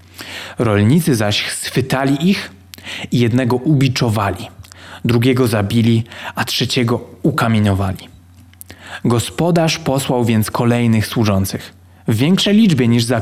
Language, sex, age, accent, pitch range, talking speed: Polish, male, 20-39, native, 95-135 Hz, 100 wpm